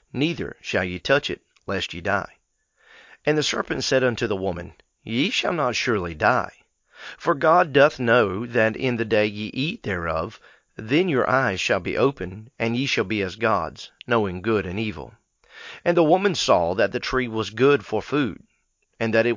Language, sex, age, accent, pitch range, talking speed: English, male, 40-59, American, 105-135 Hz, 190 wpm